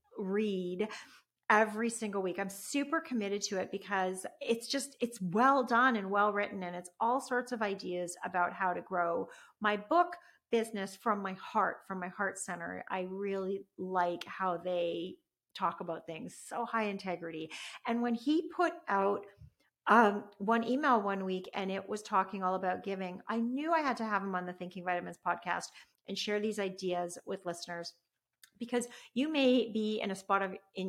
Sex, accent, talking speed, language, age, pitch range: female, American, 180 wpm, English, 40-59, 185-230 Hz